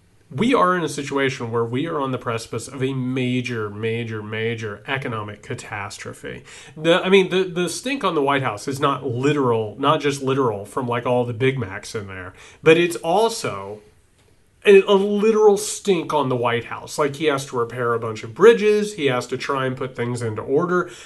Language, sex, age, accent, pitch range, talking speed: English, male, 30-49, American, 120-185 Hz, 200 wpm